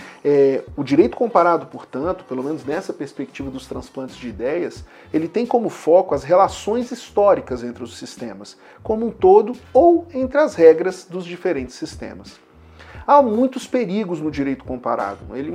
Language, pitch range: Portuguese, 135-205 Hz